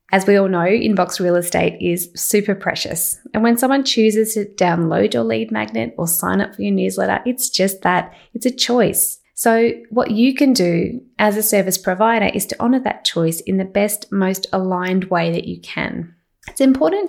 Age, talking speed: 20-39, 195 wpm